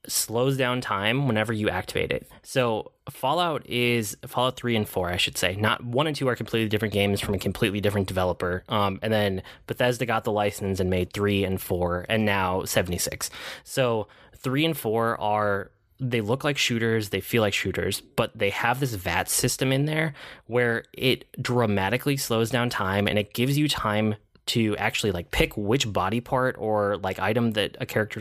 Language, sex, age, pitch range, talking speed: English, male, 20-39, 100-125 Hz, 190 wpm